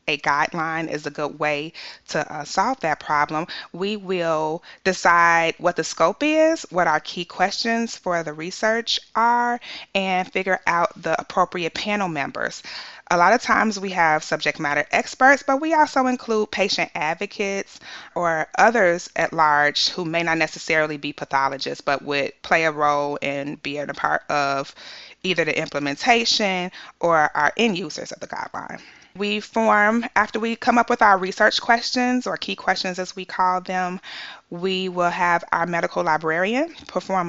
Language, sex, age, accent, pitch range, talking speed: English, female, 30-49, American, 150-195 Hz, 165 wpm